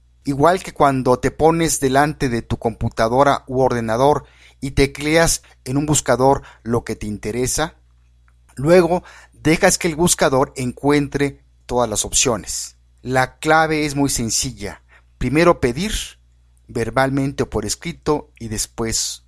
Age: 50-69